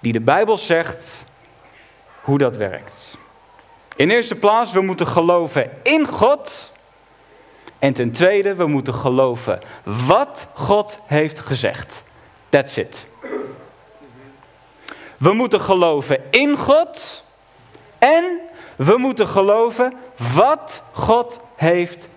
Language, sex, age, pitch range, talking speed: Dutch, male, 40-59, 150-245 Hz, 105 wpm